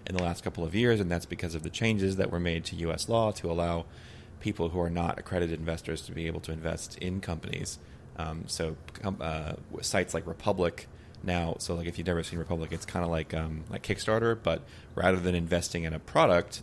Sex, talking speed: male, 220 wpm